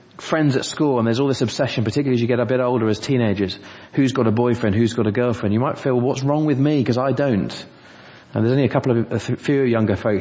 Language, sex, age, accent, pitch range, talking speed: English, male, 30-49, British, 105-135 Hz, 270 wpm